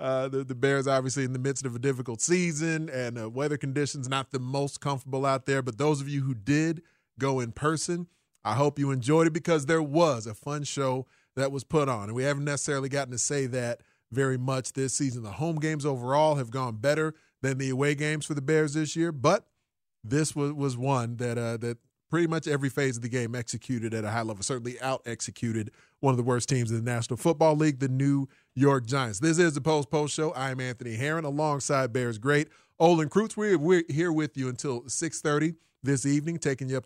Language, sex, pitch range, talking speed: English, male, 125-150 Hz, 220 wpm